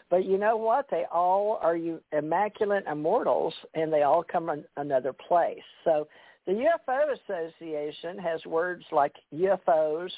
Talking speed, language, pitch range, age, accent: 145 wpm, English, 150-190 Hz, 60-79, American